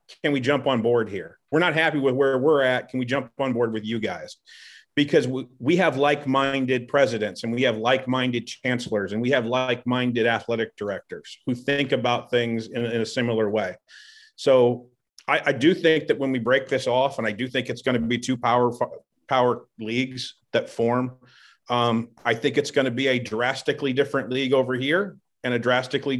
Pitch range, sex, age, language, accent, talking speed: 125-145 Hz, male, 40-59, English, American, 195 wpm